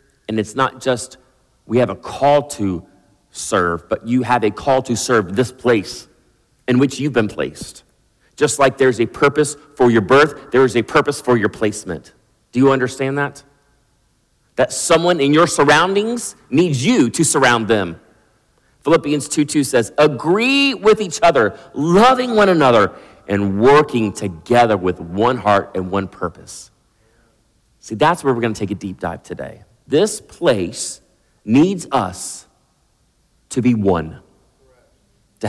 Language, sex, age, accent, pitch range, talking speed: English, male, 40-59, American, 100-135 Hz, 155 wpm